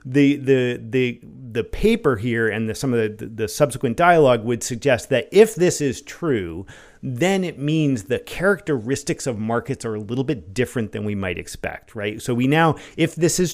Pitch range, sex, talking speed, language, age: 110-140 Hz, male, 200 wpm, English, 40-59